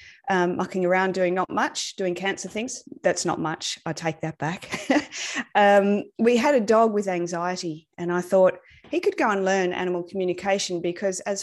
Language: English